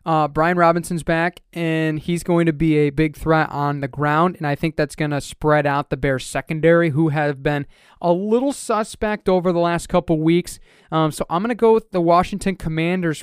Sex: male